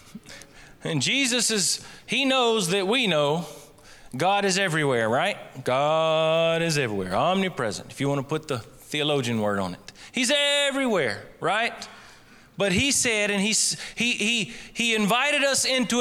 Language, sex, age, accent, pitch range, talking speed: English, male, 30-49, American, 150-225 Hz, 150 wpm